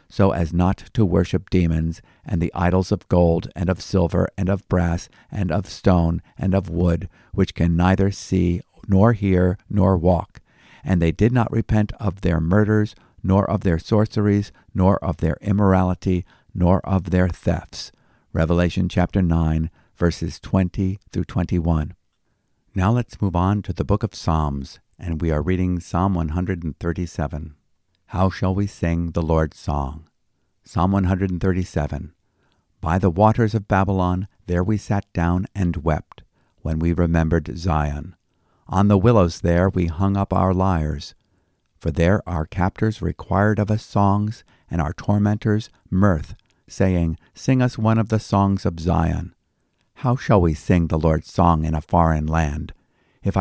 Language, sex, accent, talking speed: English, male, American, 155 wpm